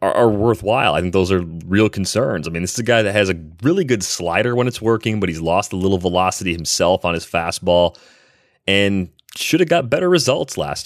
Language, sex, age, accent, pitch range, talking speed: English, male, 30-49, American, 85-100 Hz, 220 wpm